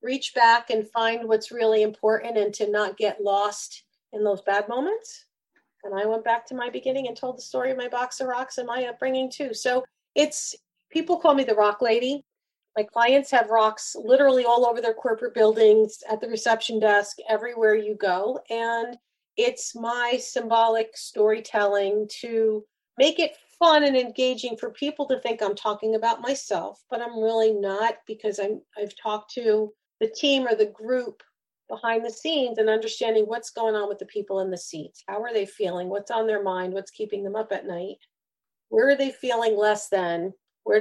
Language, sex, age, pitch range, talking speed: English, female, 40-59, 210-245 Hz, 190 wpm